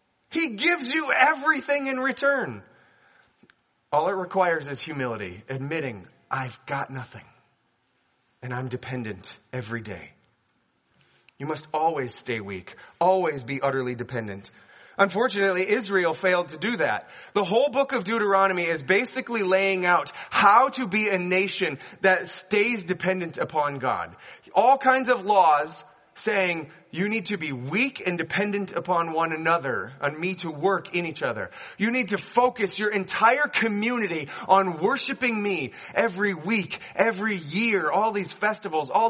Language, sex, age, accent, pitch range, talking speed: English, male, 30-49, American, 155-215 Hz, 145 wpm